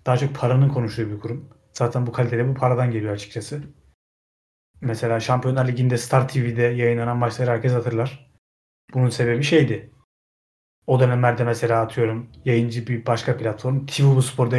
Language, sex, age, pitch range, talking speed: Turkish, male, 30-49, 115-135 Hz, 150 wpm